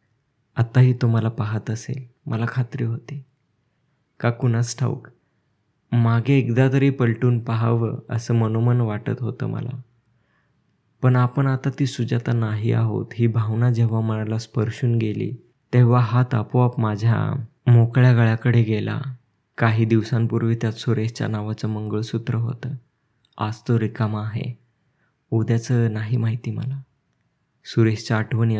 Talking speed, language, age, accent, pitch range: 125 wpm, Marathi, 20-39, native, 110-125 Hz